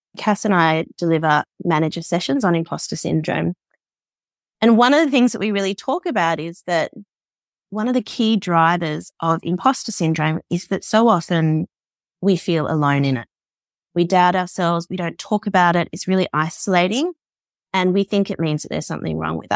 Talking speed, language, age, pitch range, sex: 180 wpm, English, 20-39, 165-195 Hz, female